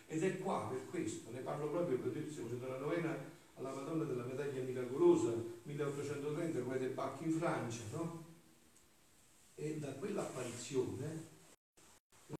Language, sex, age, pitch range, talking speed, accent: Italian, male, 40-59, 115-165 Hz, 135 wpm, native